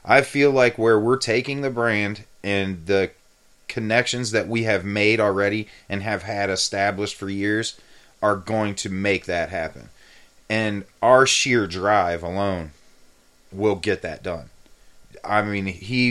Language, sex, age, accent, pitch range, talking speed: English, male, 30-49, American, 95-115 Hz, 145 wpm